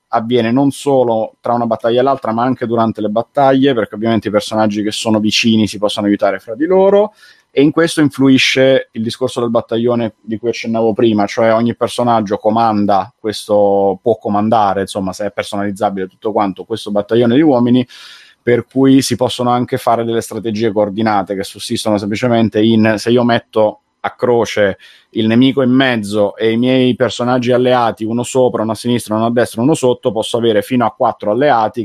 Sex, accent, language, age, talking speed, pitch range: male, native, Italian, 30-49, 185 wpm, 105-120 Hz